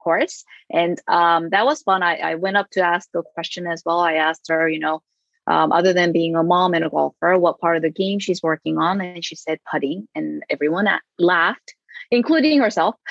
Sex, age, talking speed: female, 20-39, 215 wpm